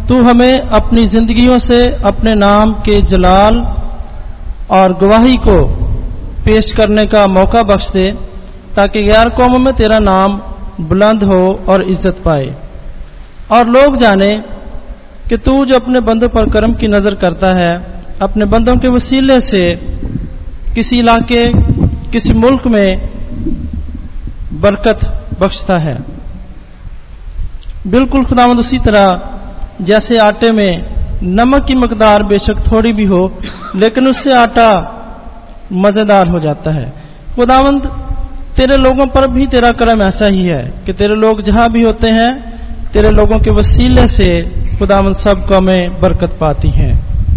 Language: Hindi